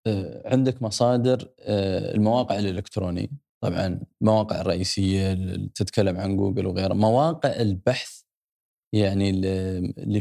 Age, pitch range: 20-39, 100-130 Hz